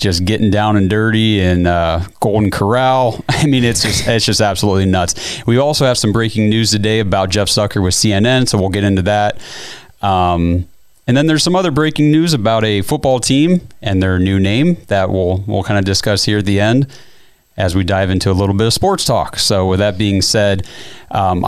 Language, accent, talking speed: English, American, 210 wpm